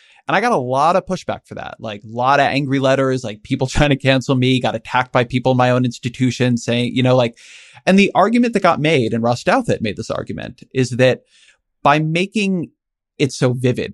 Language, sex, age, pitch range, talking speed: English, male, 30-49, 120-145 Hz, 225 wpm